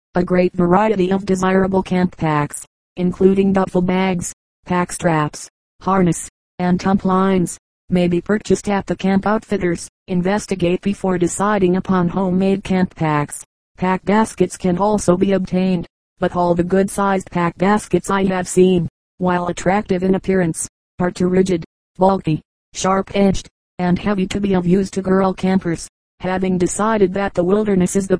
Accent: American